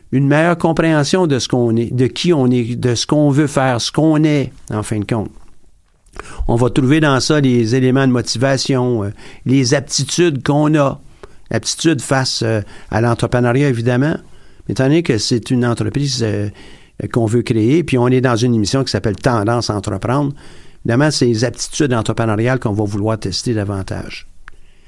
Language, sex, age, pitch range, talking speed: French, male, 50-69, 110-145 Hz, 175 wpm